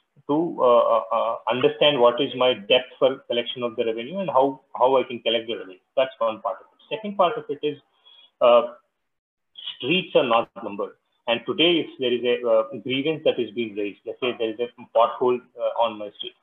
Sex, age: male, 30-49